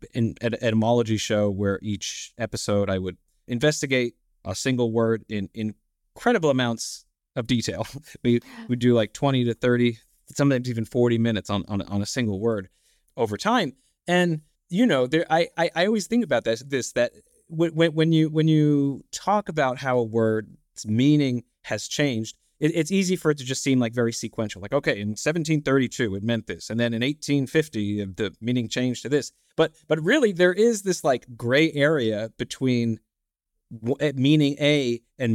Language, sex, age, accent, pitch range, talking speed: English, male, 30-49, American, 110-145 Hz, 180 wpm